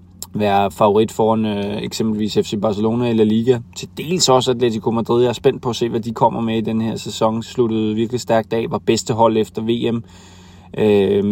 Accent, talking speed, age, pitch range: native, 200 wpm, 20-39, 105-120 Hz